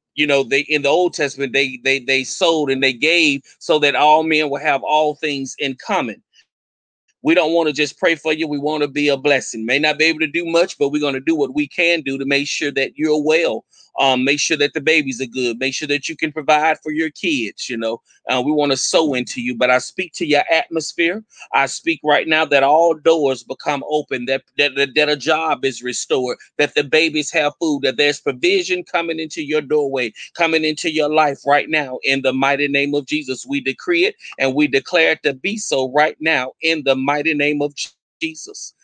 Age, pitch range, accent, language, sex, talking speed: 30-49, 135-160 Hz, American, English, male, 230 wpm